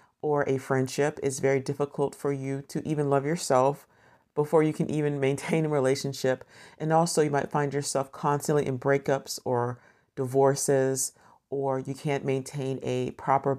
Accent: American